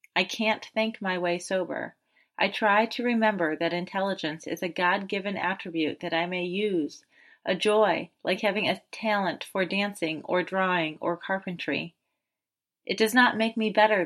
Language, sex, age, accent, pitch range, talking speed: English, female, 30-49, American, 180-220 Hz, 160 wpm